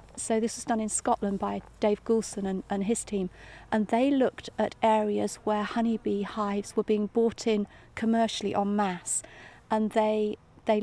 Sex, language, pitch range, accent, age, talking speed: female, English, 200-225 Hz, British, 40-59, 170 wpm